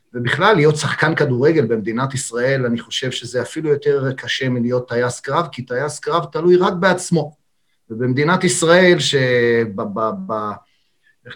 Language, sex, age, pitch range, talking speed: Hebrew, male, 40-59, 125-160 Hz, 130 wpm